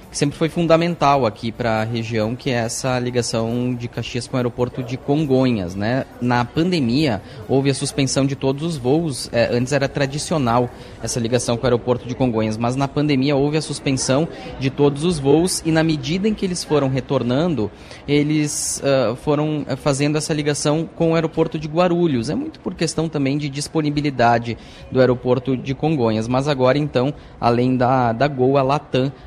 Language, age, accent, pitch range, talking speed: Portuguese, 20-39, Brazilian, 125-155 Hz, 175 wpm